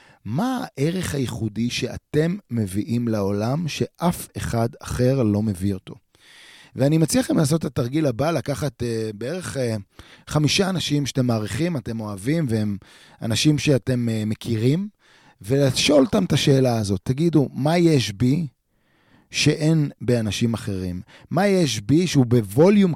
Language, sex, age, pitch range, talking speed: Hebrew, male, 30-49, 110-150 Hz, 130 wpm